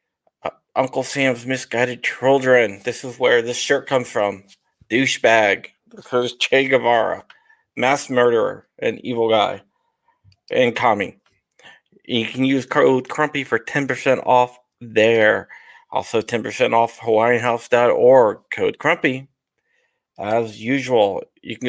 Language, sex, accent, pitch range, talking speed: English, male, American, 115-145 Hz, 115 wpm